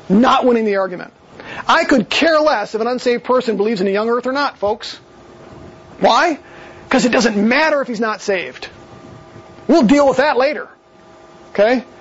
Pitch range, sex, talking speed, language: 210-280 Hz, male, 175 wpm, English